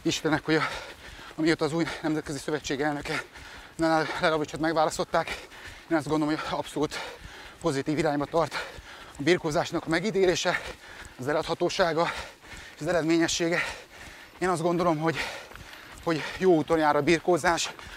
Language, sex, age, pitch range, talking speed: Hungarian, male, 30-49, 155-175 Hz, 125 wpm